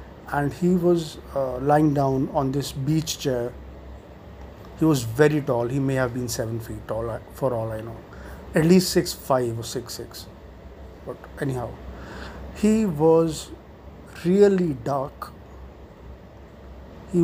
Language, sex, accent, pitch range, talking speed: English, male, Indian, 95-160 Hz, 135 wpm